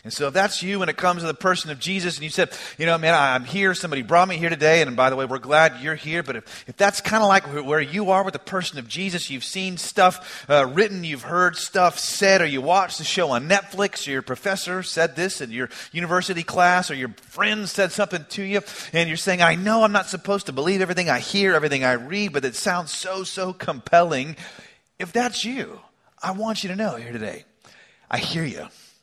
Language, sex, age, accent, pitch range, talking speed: English, male, 30-49, American, 160-195 Hz, 245 wpm